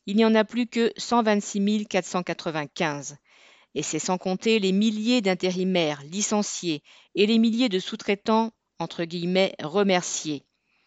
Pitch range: 175-220 Hz